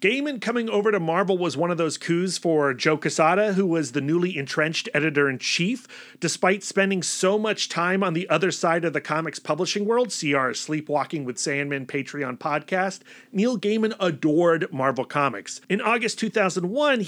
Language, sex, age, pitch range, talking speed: English, male, 40-59, 160-220 Hz, 170 wpm